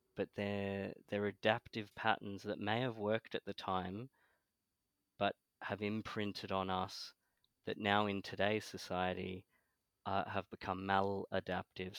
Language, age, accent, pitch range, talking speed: English, 20-39, Australian, 95-105 Hz, 130 wpm